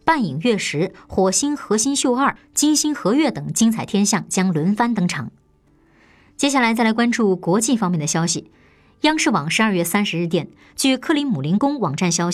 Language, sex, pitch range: Chinese, male, 170-245 Hz